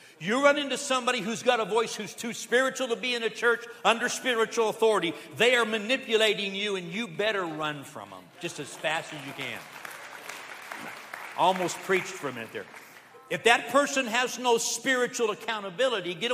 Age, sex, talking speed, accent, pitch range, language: 60-79, male, 180 wpm, American, 140-225 Hz, English